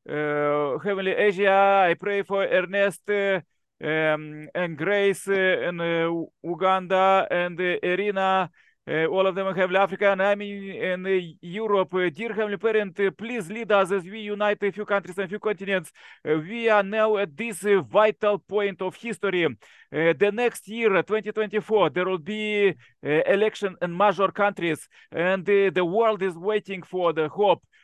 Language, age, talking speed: English, 40-59, 175 wpm